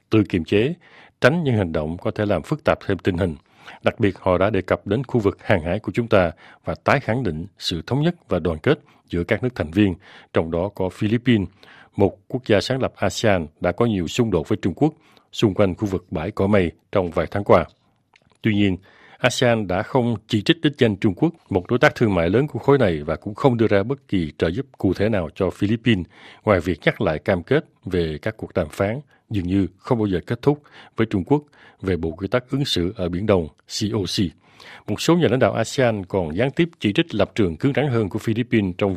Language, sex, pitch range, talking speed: Vietnamese, male, 95-125 Hz, 240 wpm